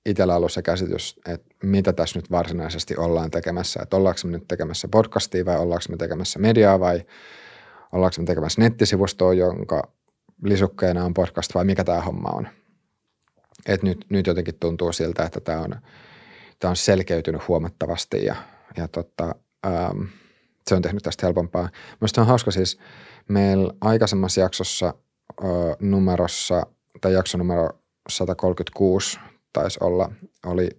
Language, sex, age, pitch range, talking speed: Finnish, male, 30-49, 85-95 Hz, 145 wpm